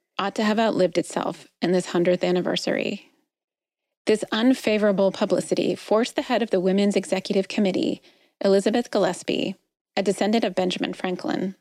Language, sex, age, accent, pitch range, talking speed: English, female, 30-49, American, 185-230 Hz, 140 wpm